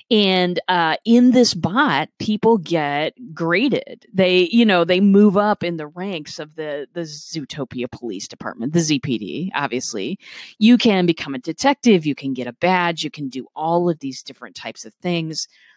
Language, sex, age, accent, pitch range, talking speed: English, female, 30-49, American, 150-205 Hz, 175 wpm